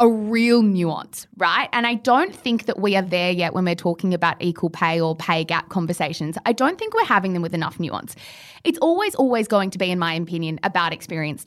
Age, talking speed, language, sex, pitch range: 20-39, 225 wpm, English, female, 185-270 Hz